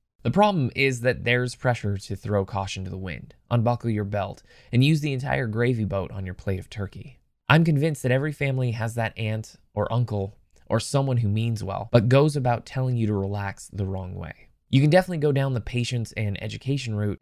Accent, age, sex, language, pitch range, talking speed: American, 20-39, male, English, 100-130 Hz, 215 wpm